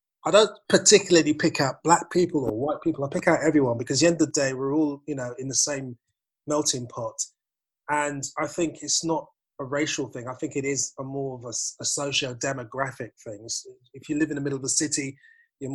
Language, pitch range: English, 125-150 Hz